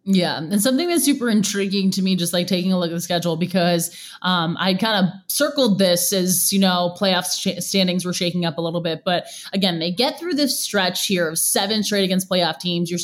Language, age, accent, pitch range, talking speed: English, 20-39, American, 175-230 Hz, 230 wpm